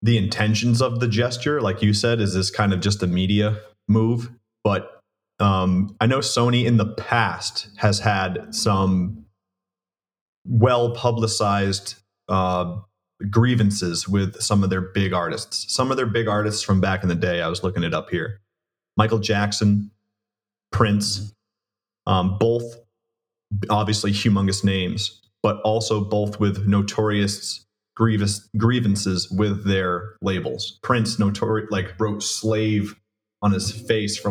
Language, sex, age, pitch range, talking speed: English, male, 30-49, 95-110 Hz, 135 wpm